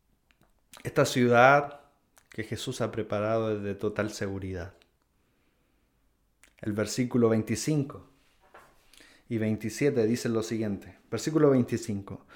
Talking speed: 95 wpm